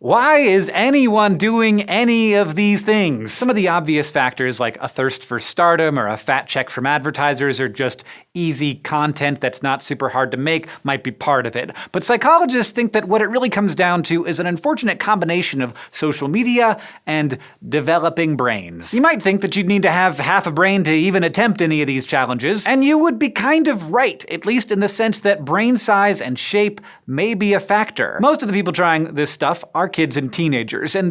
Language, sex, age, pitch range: English, male, 30-49, 145-215 Hz